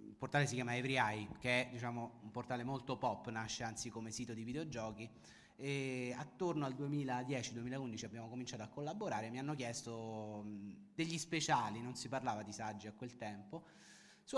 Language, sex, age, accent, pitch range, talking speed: Italian, male, 30-49, native, 115-135 Hz, 170 wpm